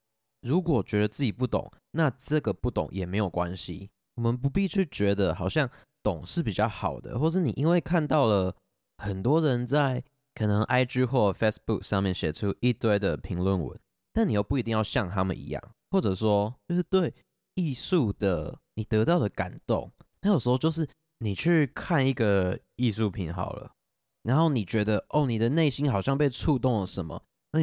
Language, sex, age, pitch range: Chinese, male, 20-39, 100-135 Hz